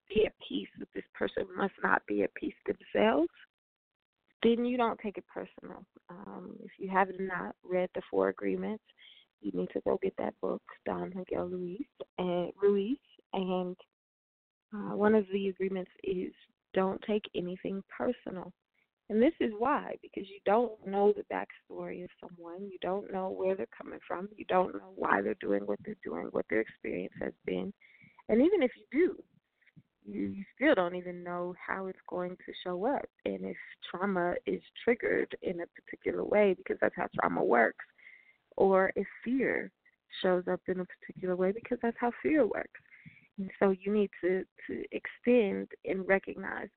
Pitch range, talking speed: 180-235 Hz, 175 wpm